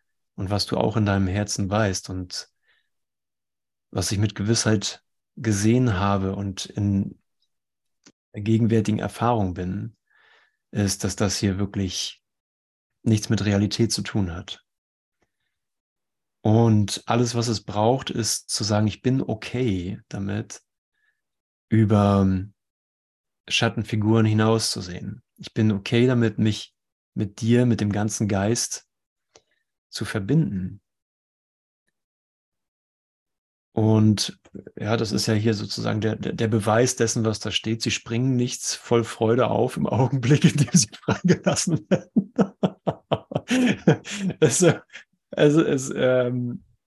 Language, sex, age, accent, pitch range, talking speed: German, male, 30-49, German, 100-120 Hz, 120 wpm